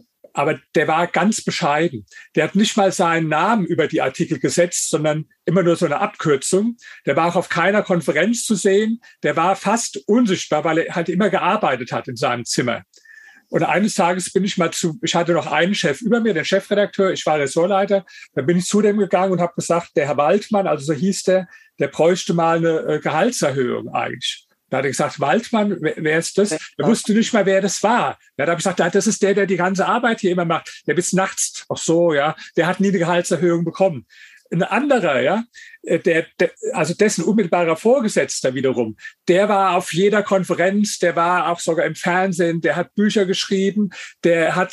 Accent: German